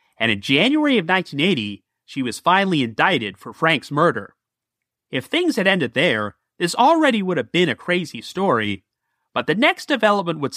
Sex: male